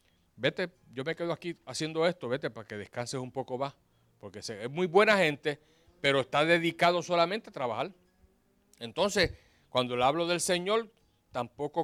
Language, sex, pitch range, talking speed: Spanish, male, 120-160 Hz, 160 wpm